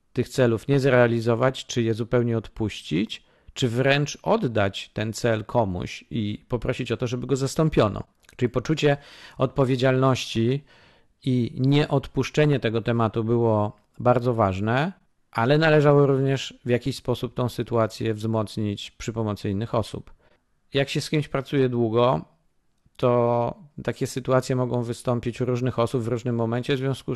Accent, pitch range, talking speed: native, 115-130 Hz, 140 wpm